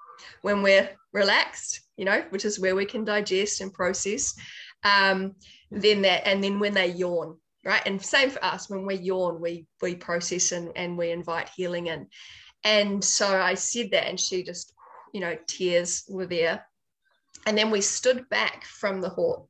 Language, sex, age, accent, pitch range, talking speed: English, female, 20-39, Australian, 185-225 Hz, 180 wpm